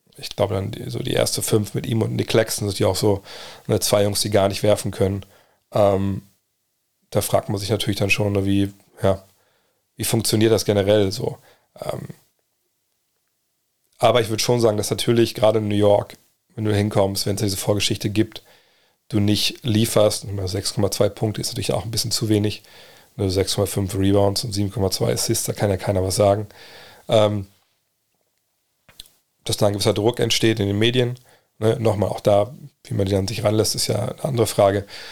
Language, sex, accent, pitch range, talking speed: German, male, German, 100-115 Hz, 180 wpm